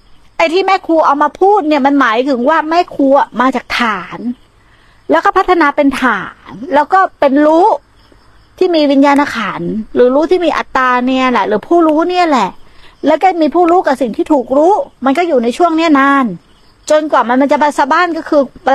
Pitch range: 255-330 Hz